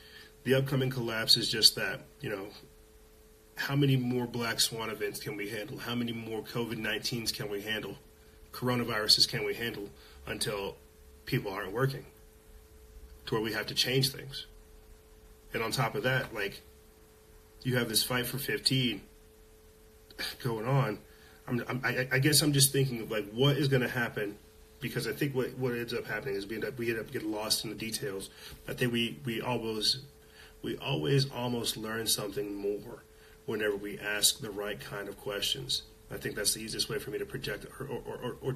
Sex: male